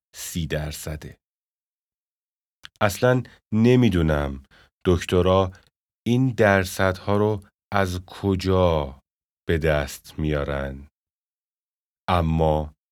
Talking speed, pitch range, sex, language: 60 wpm, 75-95 Hz, male, Persian